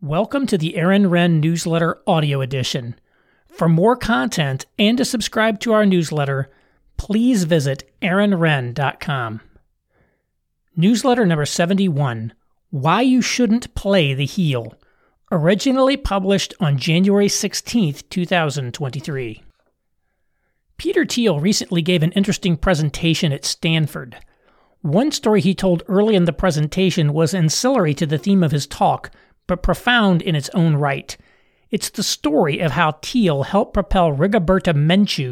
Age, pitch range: 40-59, 150-200 Hz